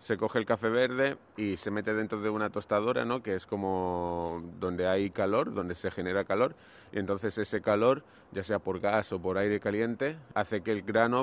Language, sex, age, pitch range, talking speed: Spanish, male, 30-49, 100-115 Hz, 210 wpm